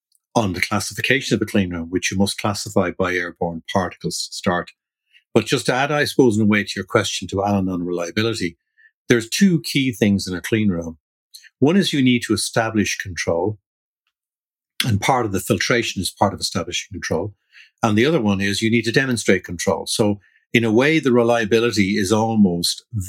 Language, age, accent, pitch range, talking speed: English, 60-79, Irish, 95-115 Hz, 195 wpm